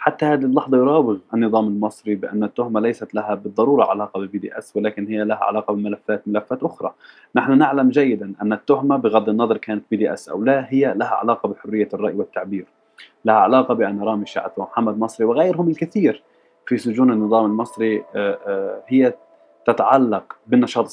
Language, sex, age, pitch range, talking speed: Arabic, male, 20-39, 105-140 Hz, 165 wpm